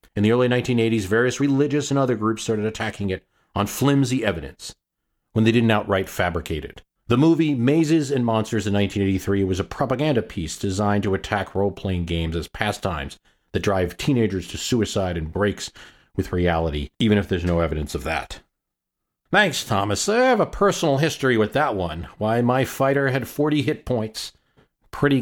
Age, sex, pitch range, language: 40-59, male, 90-125 Hz, English